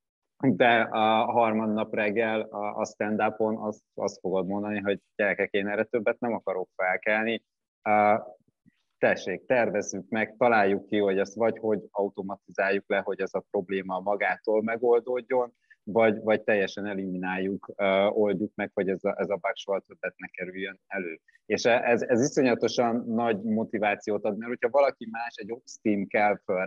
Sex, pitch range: male, 100-115 Hz